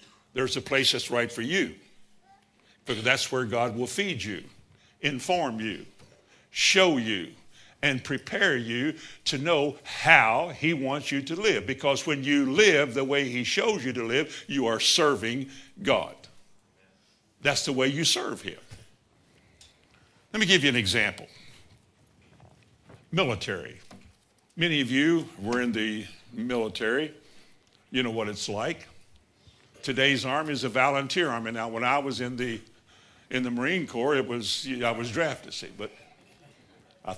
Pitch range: 110-140 Hz